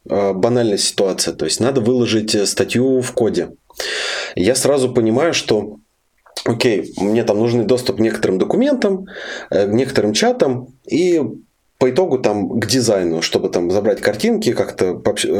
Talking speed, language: 140 wpm, Russian